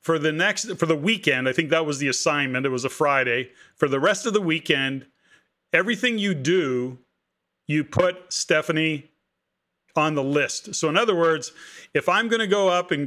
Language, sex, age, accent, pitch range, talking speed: English, male, 40-59, American, 150-190 Hz, 195 wpm